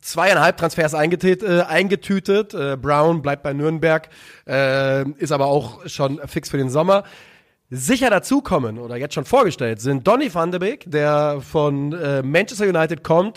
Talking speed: 155 wpm